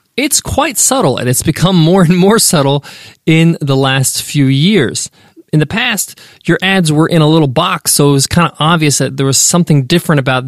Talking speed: 210 wpm